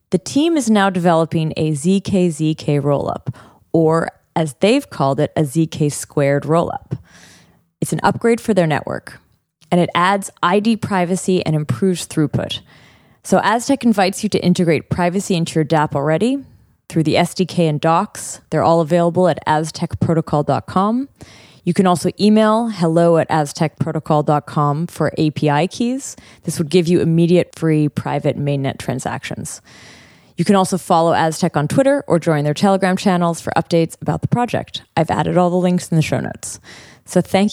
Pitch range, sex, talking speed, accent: 155-200 Hz, female, 160 wpm, American